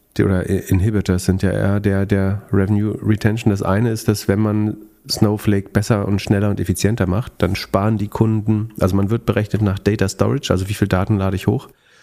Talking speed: 200 wpm